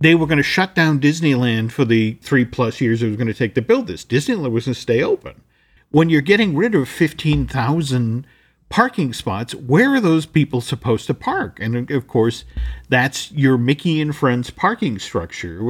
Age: 50-69